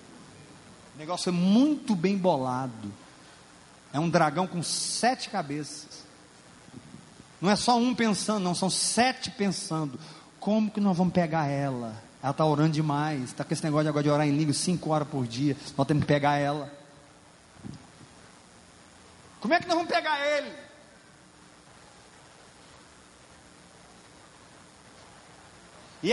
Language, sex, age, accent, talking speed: Portuguese, male, 40-59, Brazilian, 135 wpm